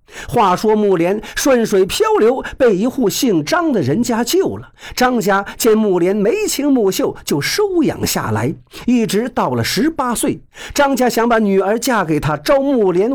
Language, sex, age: Chinese, male, 50-69